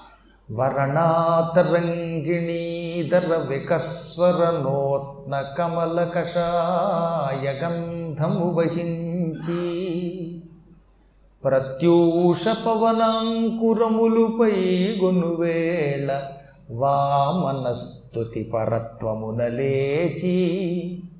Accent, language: native, Telugu